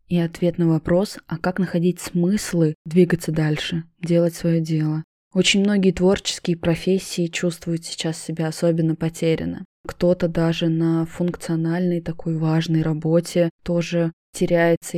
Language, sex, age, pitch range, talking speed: Russian, female, 20-39, 165-185 Hz, 125 wpm